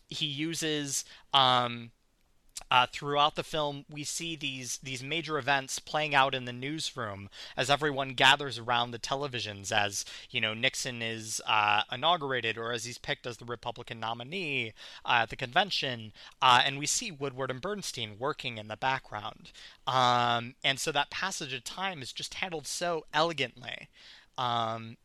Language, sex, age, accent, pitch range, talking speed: English, male, 30-49, American, 120-155 Hz, 160 wpm